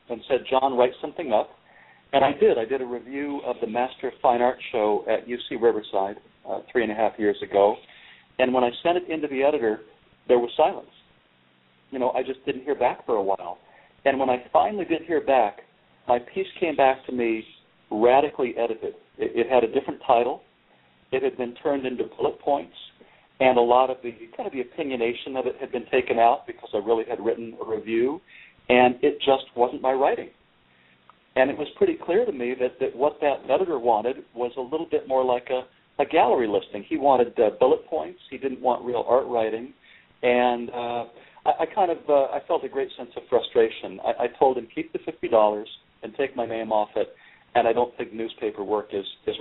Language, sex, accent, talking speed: English, male, American, 215 wpm